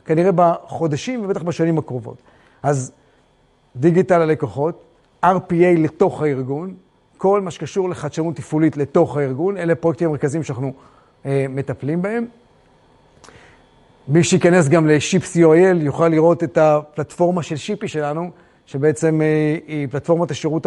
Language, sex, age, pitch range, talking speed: Hebrew, male, 30-49, 145-180 Hz, 115 wpm